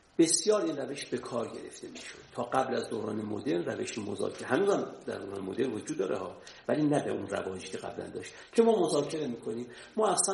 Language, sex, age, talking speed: Persian, male, 50-69, 190 wpm